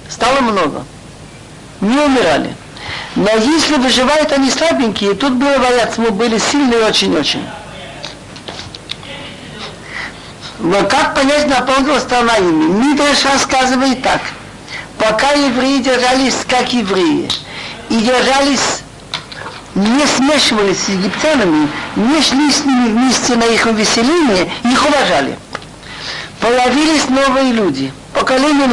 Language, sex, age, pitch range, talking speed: Russian, male, 50-69, 230-280 Hz, 100 wpm